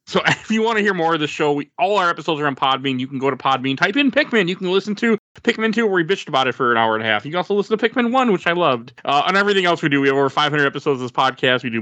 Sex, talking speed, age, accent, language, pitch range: male, 345 wpm, 20-39, American, English, 130-175 Hz